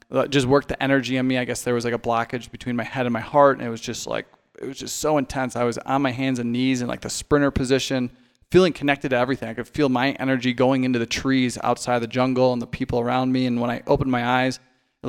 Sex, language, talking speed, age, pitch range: male, English, 280 wpm, 20-39, 120-130 Hz